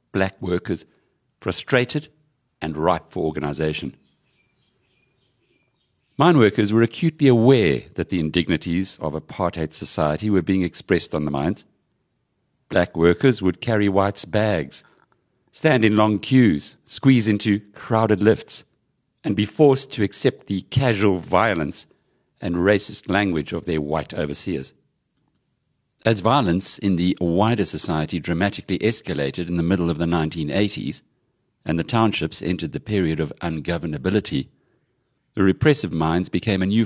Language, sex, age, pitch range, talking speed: English, male, 60-79, 85-115 Hz, 130 wpm